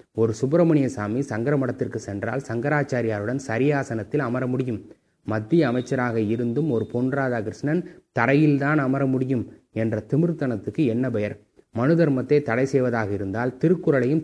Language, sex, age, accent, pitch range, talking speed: Tamil, male, 30-49, native, 115-145 Hz, 120 wpm